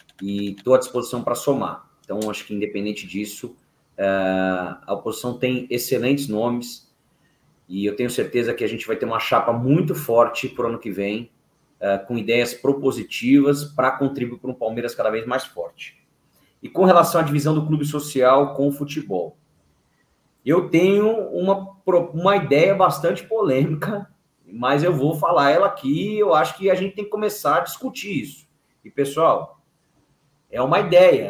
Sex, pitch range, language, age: male, 130-170 Hz, Portuguese, 30-49